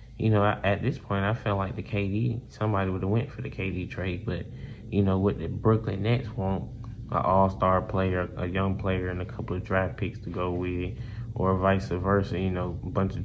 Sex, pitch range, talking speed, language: male, 90-100 Hz, 220 wpm, English